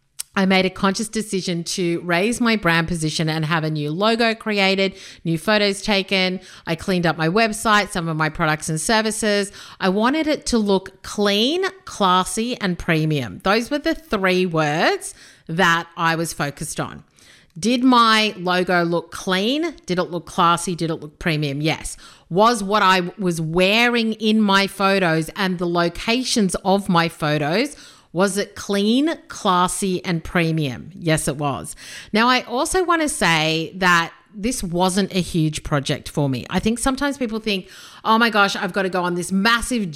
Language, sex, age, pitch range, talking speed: English, female, 40-59, 165-220 Hz, 175 wpm